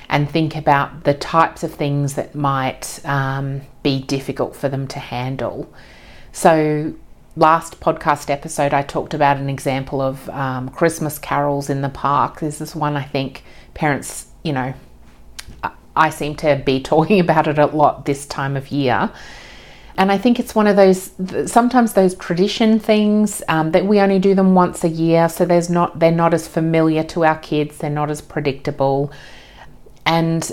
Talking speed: 175 wpm